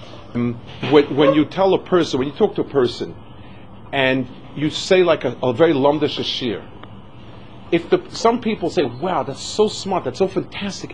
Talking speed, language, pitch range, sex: 175 wpm, English, 110-180 Hz, male